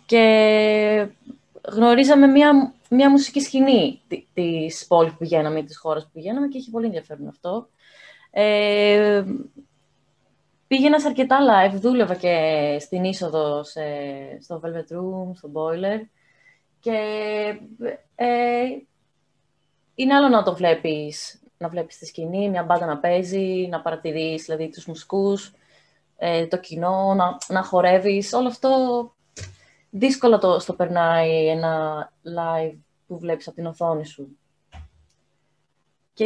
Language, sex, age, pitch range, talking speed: Greek, female, 20-39, 165-240 Hz, 120 wpm